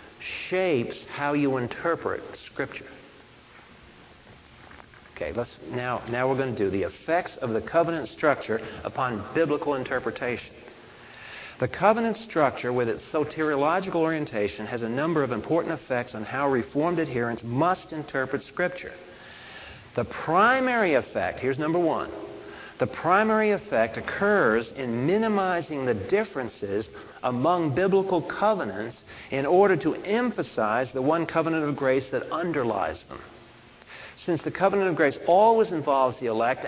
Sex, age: male, 60-79